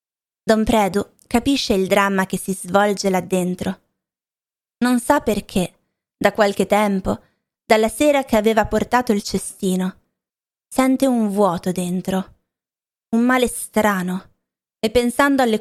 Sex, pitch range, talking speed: female, 190-230 Hz, 125 wpm